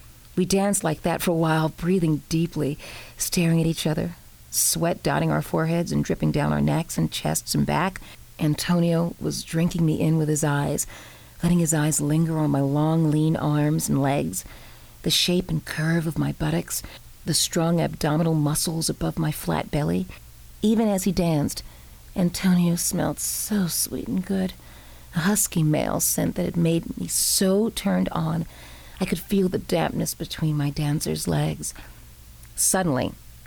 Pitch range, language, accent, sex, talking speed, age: 145-180 Hz, English, American, female, 165 wpm, 40-59